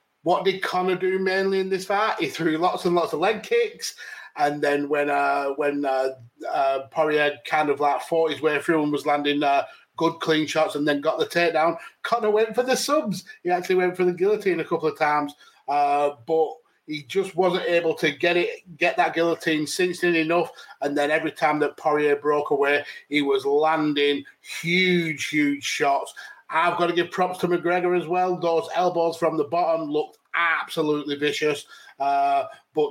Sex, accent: male, British